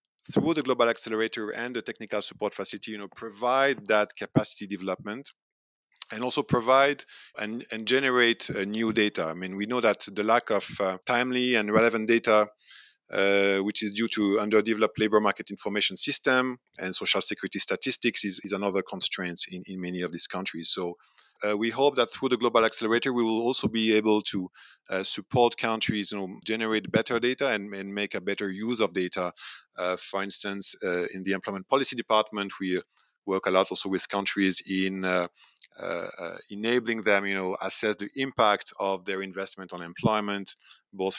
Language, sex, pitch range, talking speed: English, male, 95-120 Hz, 180 wpm